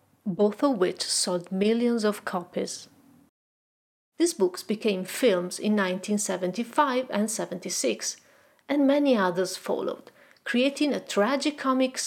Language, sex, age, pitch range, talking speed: Italian, female, 40-59, 190-260 Hz, 110 wpm